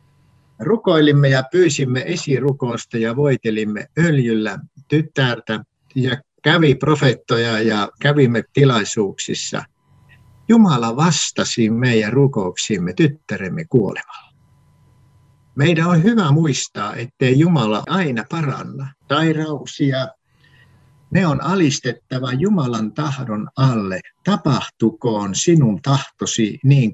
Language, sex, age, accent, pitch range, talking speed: Finnish, male, 60-79, native, 115-150 Hz, 85 wpm